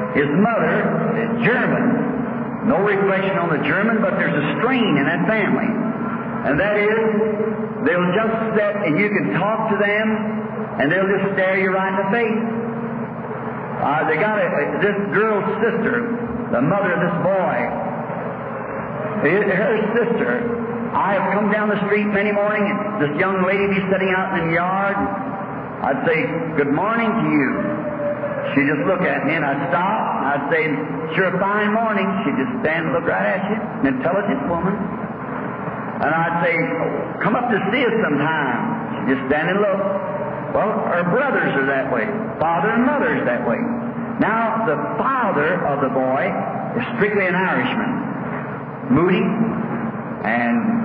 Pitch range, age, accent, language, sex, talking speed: 195-225 Hz, 60-79, American, English, male, 165 wpm